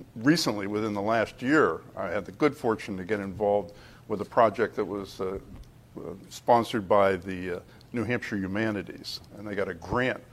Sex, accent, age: male, American, 50-69